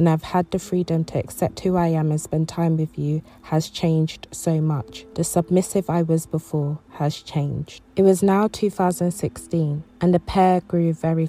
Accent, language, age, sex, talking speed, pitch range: British, English, 20-39, female, 185 wpm, 155-195 Hz